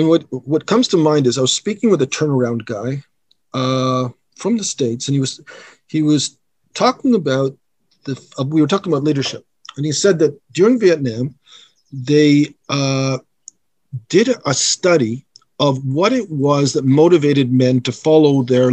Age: 50-69